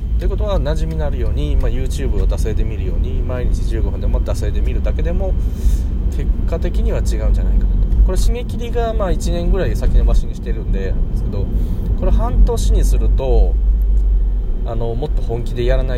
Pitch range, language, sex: 75-115 Hz, Japanese, male